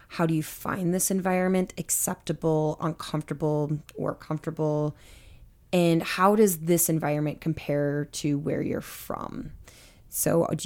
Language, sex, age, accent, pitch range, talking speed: English, female, 20-39, American, 150-170 Hz, 125 wpm